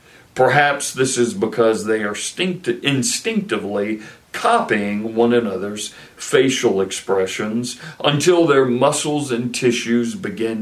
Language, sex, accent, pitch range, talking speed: English, male, American, 105-130 Hz, 100 wpm